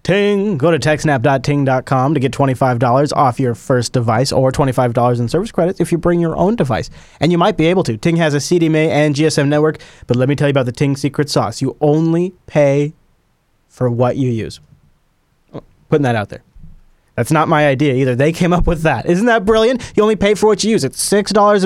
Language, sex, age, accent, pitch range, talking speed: English, male, 30-49, American, 130-165 Hz, 215 wpm